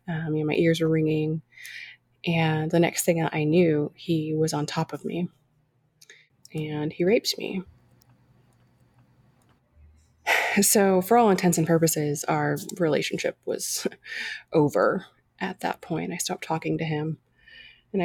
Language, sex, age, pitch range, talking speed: English, female, 20-39, 145-180 Hz, 145 wpm